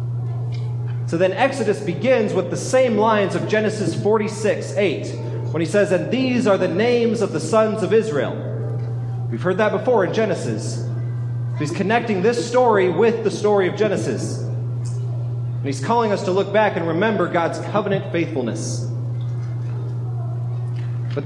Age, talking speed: 30-49, 150 wpm